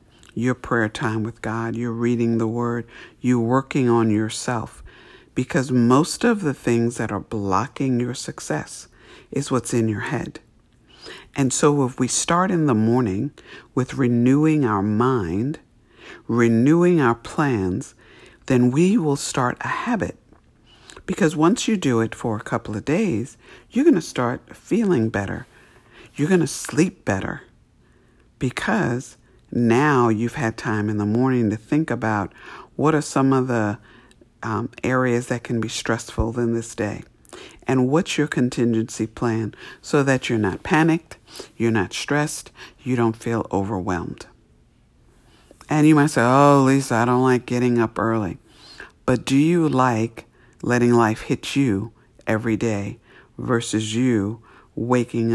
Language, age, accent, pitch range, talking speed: English, 60-79, American, 110-135 Hz, 150 wpm